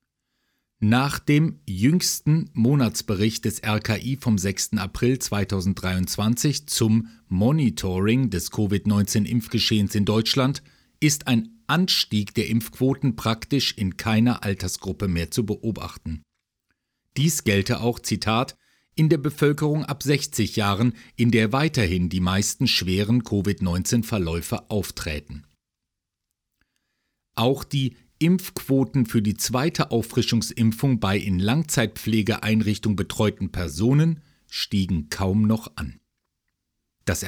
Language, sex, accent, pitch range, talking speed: German, male, German, 100-130 Hz, 105 wpm